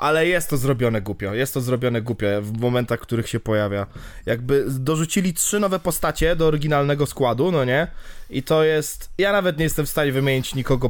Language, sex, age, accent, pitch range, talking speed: Polish, male, 20-39, native, 125-155 Hz, 200 wpm